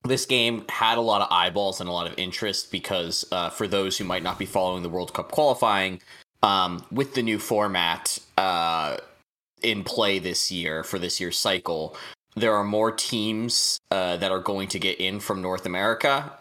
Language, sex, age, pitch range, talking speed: English, male, 20-39, 100-135 Hz, 195 wpm